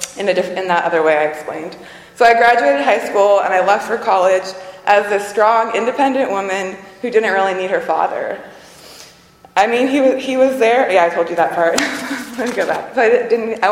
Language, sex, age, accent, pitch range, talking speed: English, female, 20-39, American, 170-195 Hz, 220 wpm